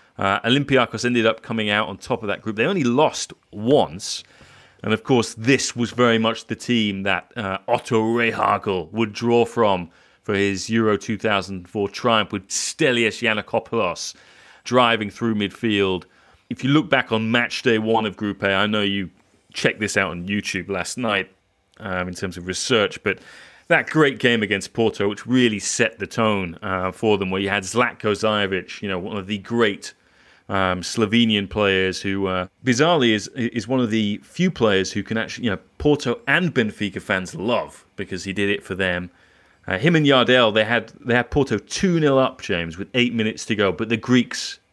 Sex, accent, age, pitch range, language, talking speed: male, British, 30-49, 100-120 Hz, English, 190 wpm